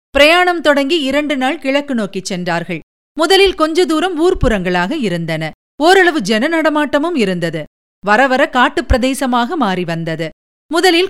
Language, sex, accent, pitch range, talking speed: Tamil, female, native, 205-305 Hz, 120 wpm